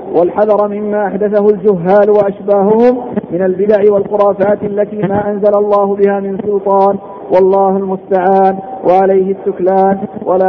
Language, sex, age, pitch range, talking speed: Arabic, male, 50-69, 195-210 Hz, 115 wpm